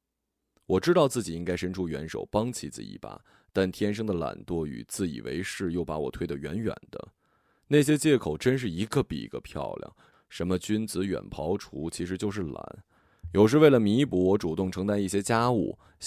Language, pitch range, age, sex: Chinese, 85-110 Hz, 20-39, male